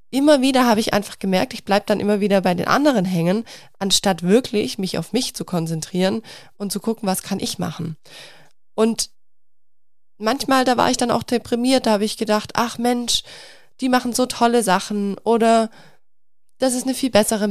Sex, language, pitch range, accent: female, German, 185-235 Hz, German